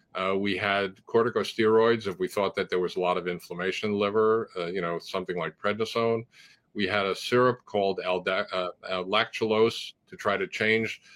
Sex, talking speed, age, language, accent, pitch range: male, 185 wpm, 50-69, English, American, 95-115 Hz